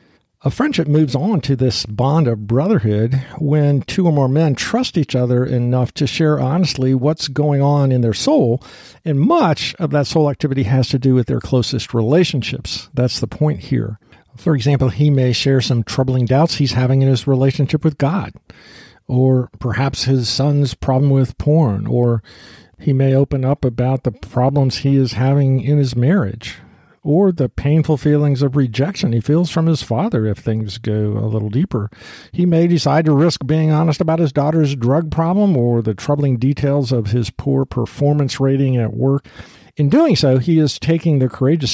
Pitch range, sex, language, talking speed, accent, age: 125-150 Hz, male, English, 185 wpm, American, 50-69